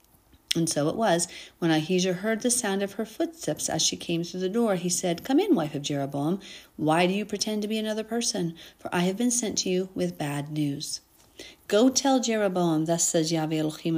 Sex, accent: female, American